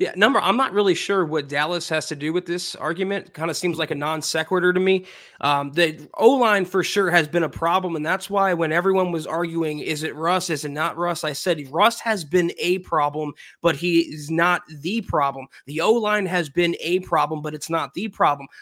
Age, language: 20-39, English